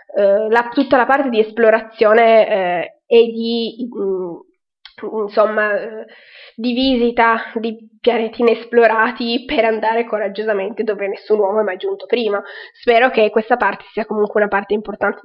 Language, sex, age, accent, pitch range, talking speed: Italian, female, 20-39, native, 210-245 Hz, 130 wpm